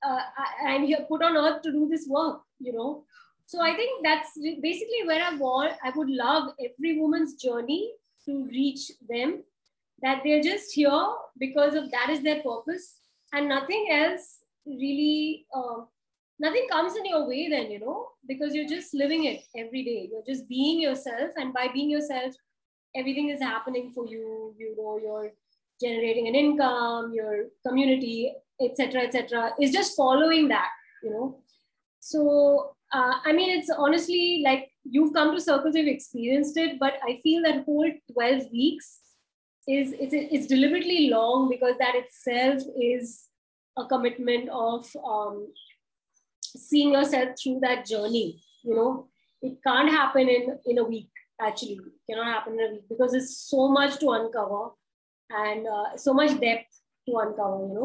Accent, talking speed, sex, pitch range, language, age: Indian, 165 wpm, female, 245-300 Hz, English, 20-39